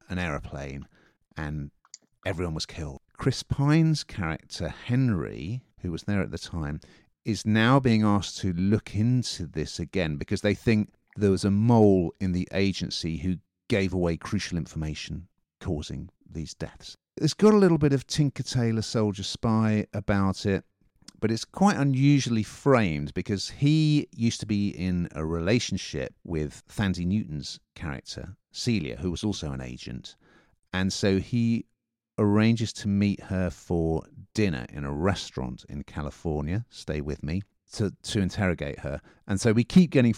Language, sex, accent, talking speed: English, male, British, 155 wpm